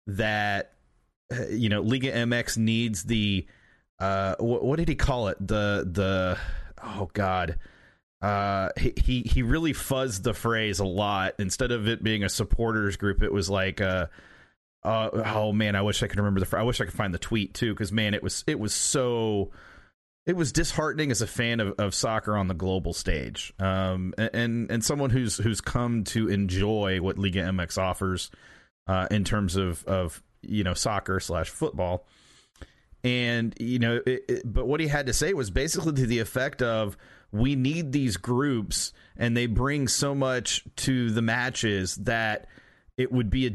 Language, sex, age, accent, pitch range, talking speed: English, male, 30-49, American, 100-125 Hz, 185 wpm